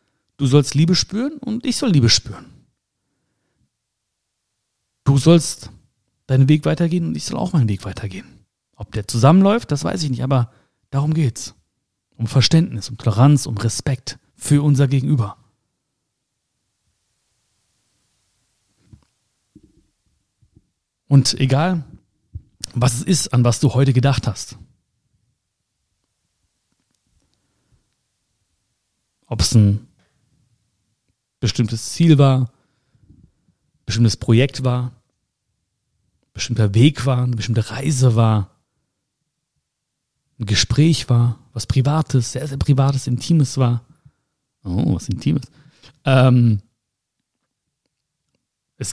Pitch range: 115-145 Hz